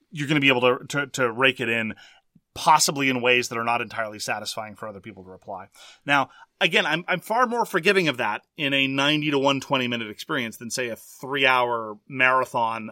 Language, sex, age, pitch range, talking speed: English, male, 30-49, 120-165 Hz, 215 wpm